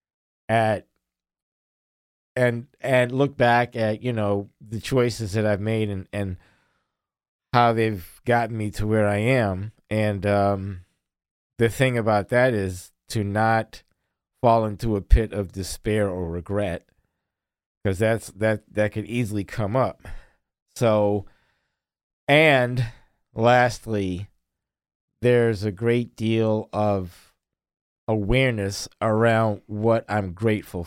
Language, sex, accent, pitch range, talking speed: English, male, American, 95-115 Hz, 120 wpm